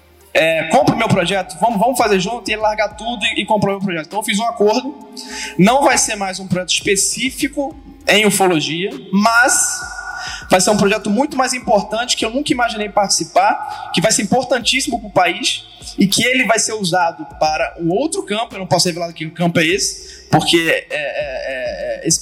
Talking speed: 205 wpm